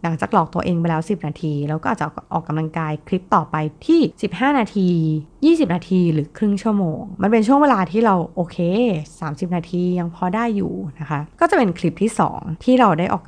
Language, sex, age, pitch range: Thai, female, 20-39, 160-235 Hz